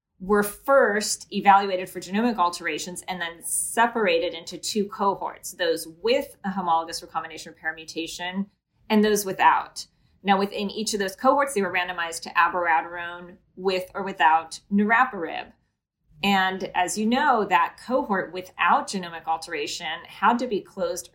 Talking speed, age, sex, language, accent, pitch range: 140 wpm, 30-49, female, English, American, 170-215 Hz